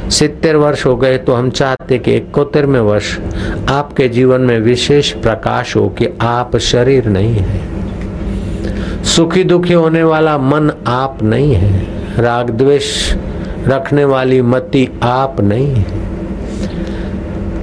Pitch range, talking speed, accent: 110-135 Hz, 135 wpm, native